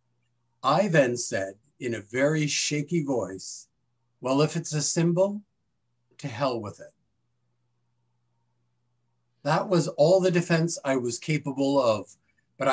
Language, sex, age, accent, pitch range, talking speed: English, male, 50-69, American, 115-155 Hz, 125 wpm